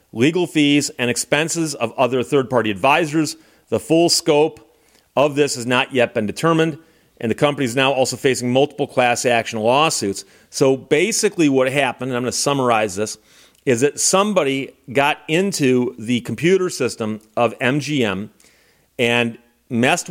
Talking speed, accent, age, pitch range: 150 wpm, American, 40-59, 125-155 Hz